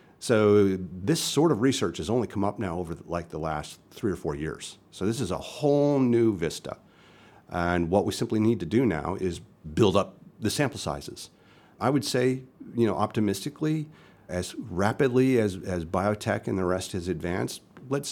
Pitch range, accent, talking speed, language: 95-125 Hz, American, 185 wpm, English